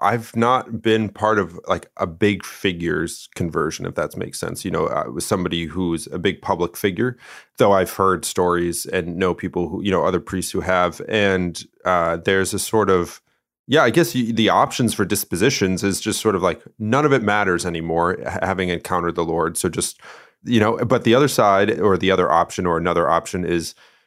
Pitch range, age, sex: 90-100 Hz, 30-49, male